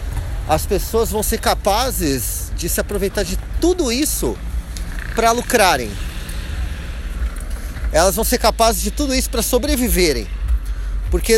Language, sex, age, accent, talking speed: Portuguese, male, 30-49, Brazilian, 120 wpm